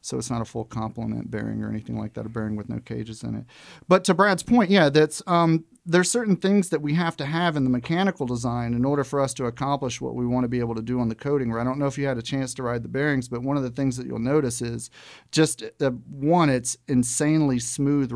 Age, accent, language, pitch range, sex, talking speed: 40-59, American, English, 120-150 Hz, male, 270 wpm